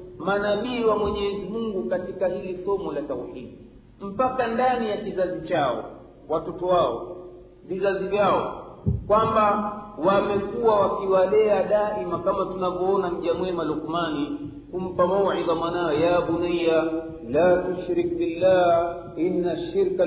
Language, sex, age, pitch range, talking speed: Swahili, male, 50-69, 160-205 Hz, 105 wpm